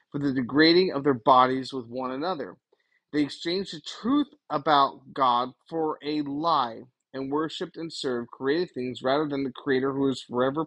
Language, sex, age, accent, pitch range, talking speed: English, male, 30-49, American, 135-180 Hz, 175 wpm